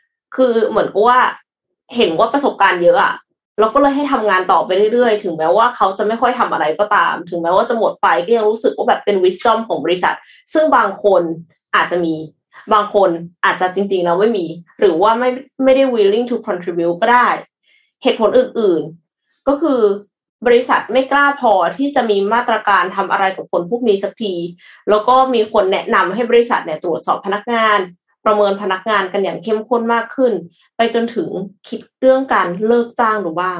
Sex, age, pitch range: female, 20-39, 185-245 Hz